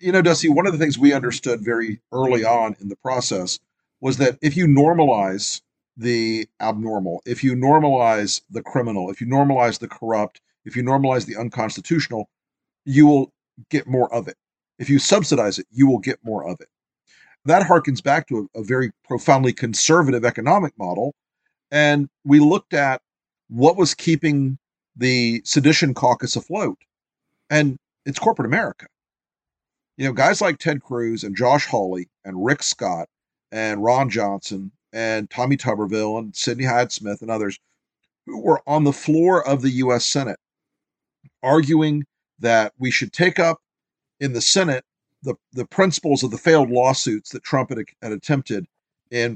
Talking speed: 165 wpm